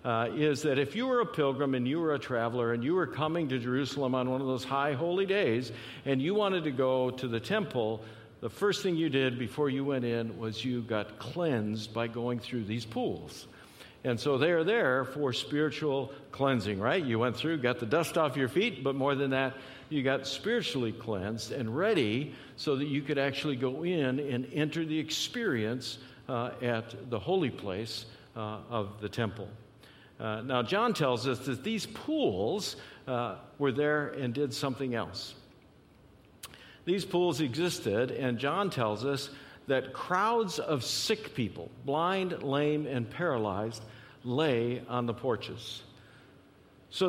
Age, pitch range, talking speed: 60-79, 120-150 Hz, 170 wpm